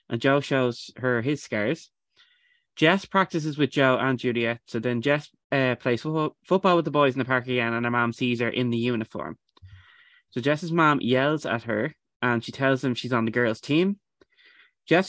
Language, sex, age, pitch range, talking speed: English, male, 20-39, 120-155 Hz, 195 wpm